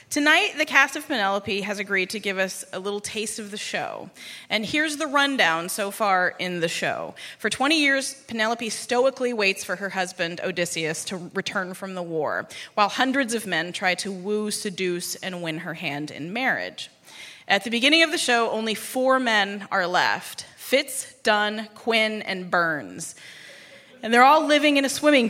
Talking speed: 185 wpm